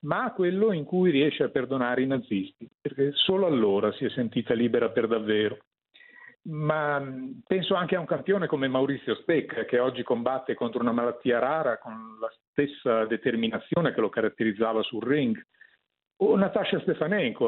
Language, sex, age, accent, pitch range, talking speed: Italian, male, 50-69, native, 120-195 Hz, 160 wpm